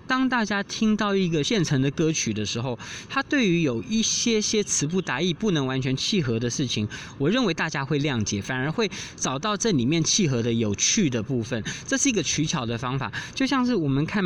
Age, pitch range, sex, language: 20-39, 120-180 Hz, male, Chinese